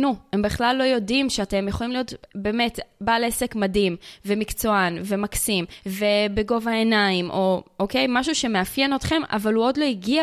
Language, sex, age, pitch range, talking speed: Hebrew, female, 20-39, 190-235 Hz, 155 wpm